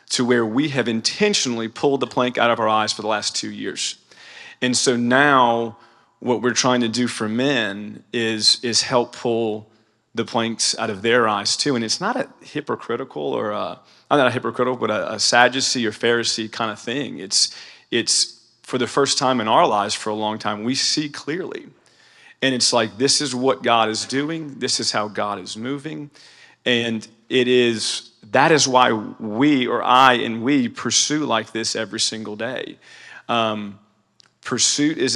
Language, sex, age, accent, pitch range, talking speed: English, male, 40-59, American, 115-135 Hz, 185 wpm